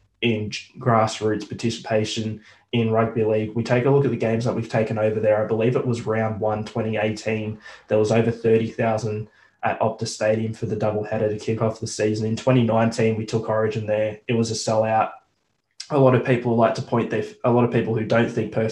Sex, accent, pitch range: male, Australian, 110-115 Hz